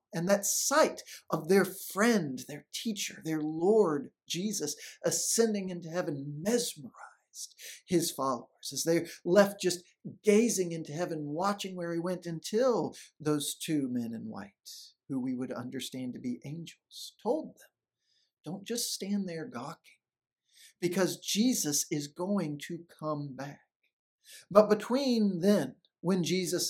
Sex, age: male, 50-69